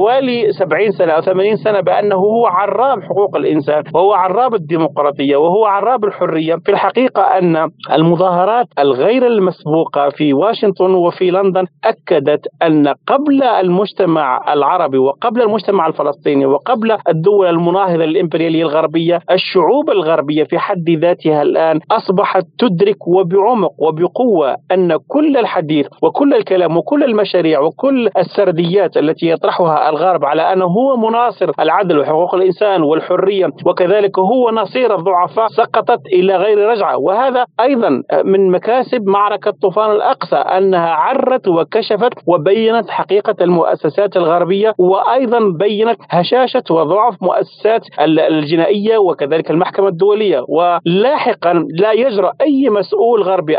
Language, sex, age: Arabic, male, 40-59